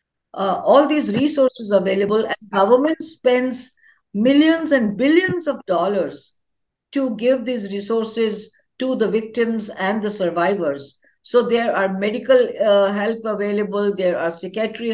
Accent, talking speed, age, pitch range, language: Indian, 135 wpm, 60-79, 190-240 Hz, English